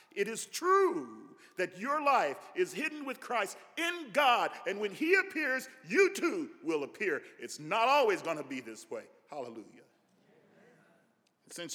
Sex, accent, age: male, American, 50-69